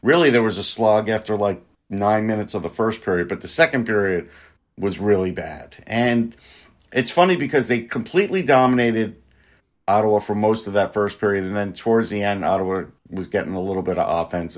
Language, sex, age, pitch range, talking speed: English, male, 50-69, 95-120 Hz, 195 wpm